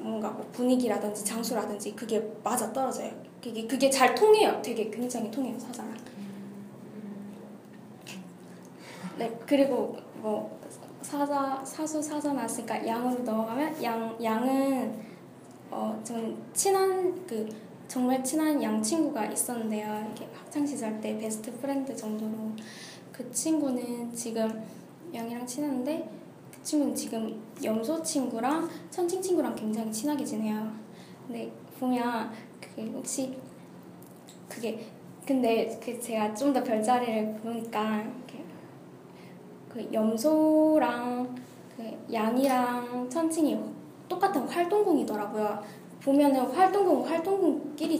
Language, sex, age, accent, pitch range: Korean, female, 10-29, native, 220-285 Hz